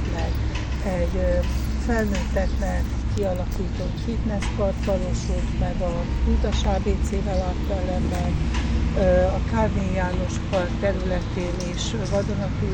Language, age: Hungarian, 60-79